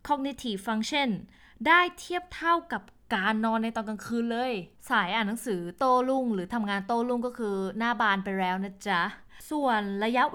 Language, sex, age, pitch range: Thai, female, 20-39, 210-275 Hz